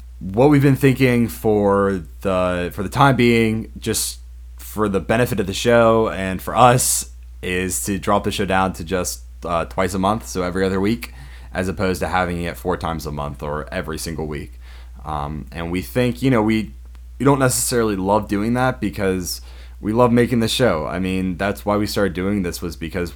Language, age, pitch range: English, 20-39, 75-100 Hz